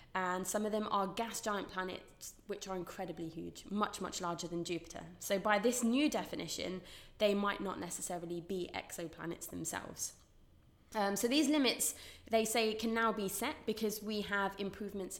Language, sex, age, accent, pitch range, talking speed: English, female, 20-39, British, 185-225 Hz, 170 wpm